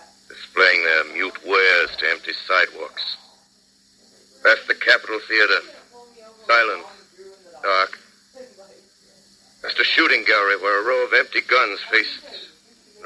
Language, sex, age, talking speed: English, male, 60-79, 115 wpm